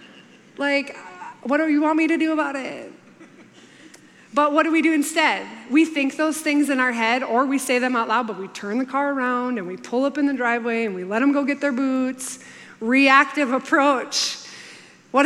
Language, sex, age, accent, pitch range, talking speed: English, female, 20-39, American, 235-285 Hz, 210 wpm